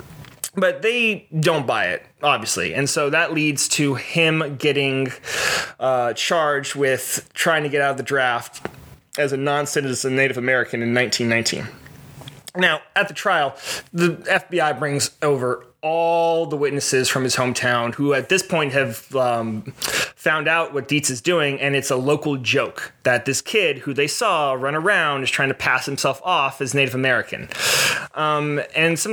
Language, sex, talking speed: English, male, 165 wpm